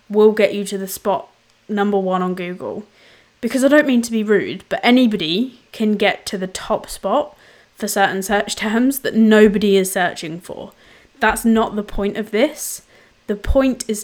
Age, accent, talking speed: 20-39, British, 185 wpm